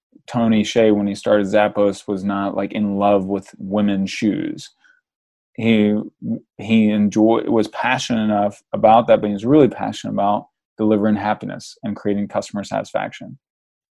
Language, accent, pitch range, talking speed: English, American, 100-125 Hz, 145 wpm